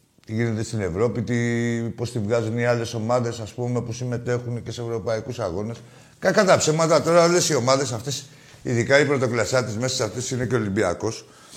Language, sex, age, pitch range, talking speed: Greek, male, 60-79, 115-155 Hz, 180 wpm